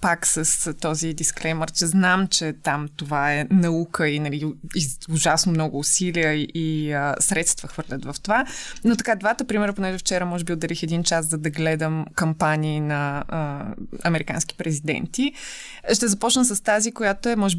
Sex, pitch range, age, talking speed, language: female, 160-200 Hz, 20-39, 165 wpm, Bulgarian